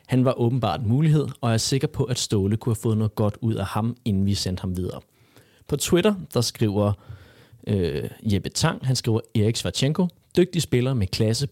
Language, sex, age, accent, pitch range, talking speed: Danish, male, 30-49, native, 105-130 Hz, 205 wpm